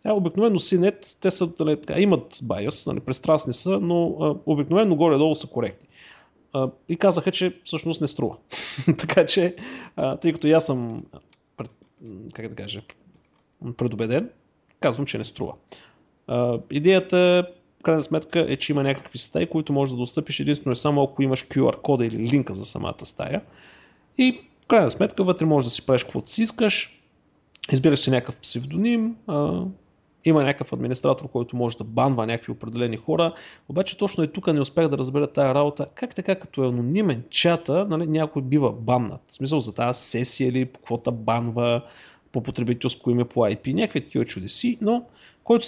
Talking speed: 175 wpm